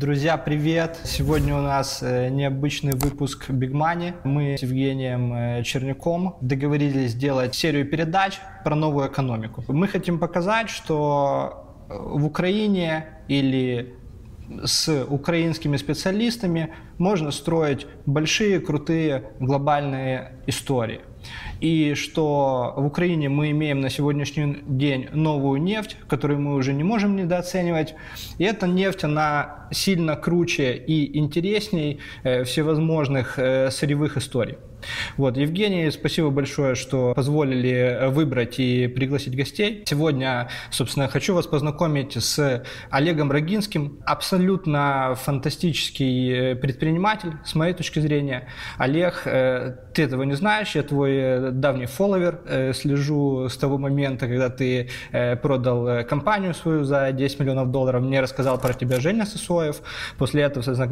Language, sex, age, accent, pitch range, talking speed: Russian, male, 20-39, native, 130-160 Hz, 120 wpm